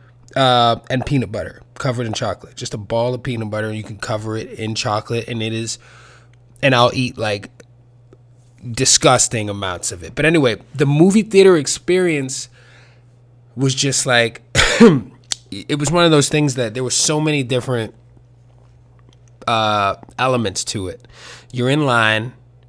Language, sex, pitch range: English, male, 115-135 Hz